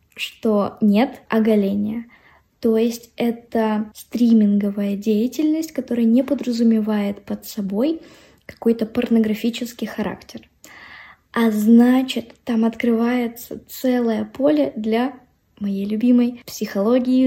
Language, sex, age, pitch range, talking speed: Russian, female, 20-39, 220-250 Hz, 90 wpm